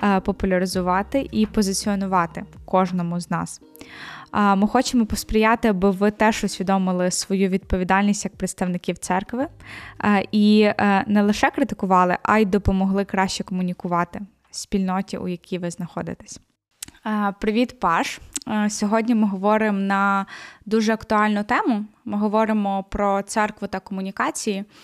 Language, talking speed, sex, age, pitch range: Ukrainian, 120 wpm, female, 10-29, 190-215 Hz